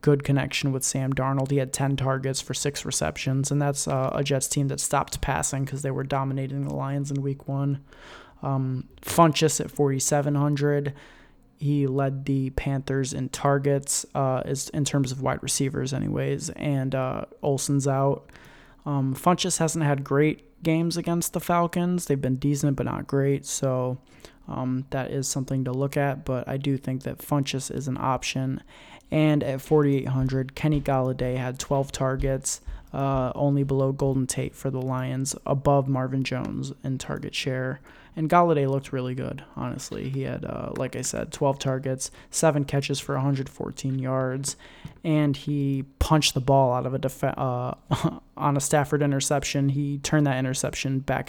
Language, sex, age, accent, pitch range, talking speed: English, male, 20-39, American, 130-145 Hz, 170 wpm